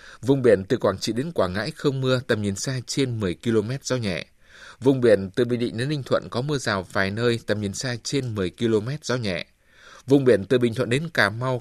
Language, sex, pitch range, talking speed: Vietnamese, male, 100-130 Hz, 245 wpm